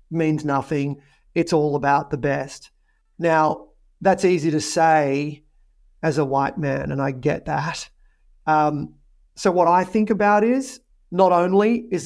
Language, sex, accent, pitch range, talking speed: English, male, Australian, 150-185 Hz, 150 wpm